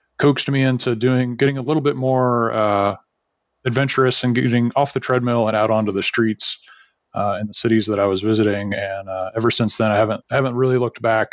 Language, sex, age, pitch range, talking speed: English, male, 30-49, 105-125 Hz, 215 wpm